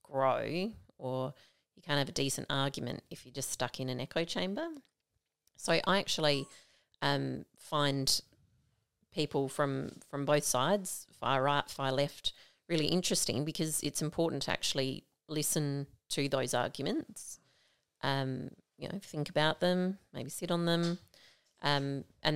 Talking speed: 140 wpm